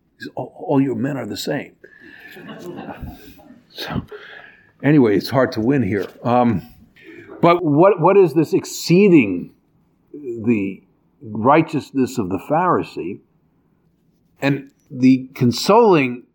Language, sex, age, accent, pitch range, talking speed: English, male, 50-69, American, 115-150 Hz, 105 wpm